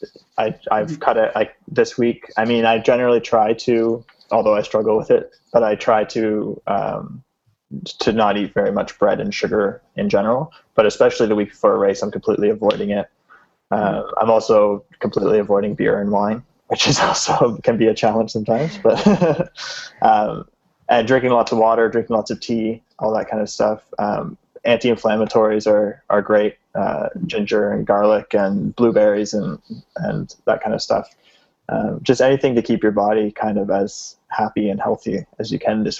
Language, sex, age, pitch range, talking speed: English, male, 20-39, 105-125 Hz, 185 wpm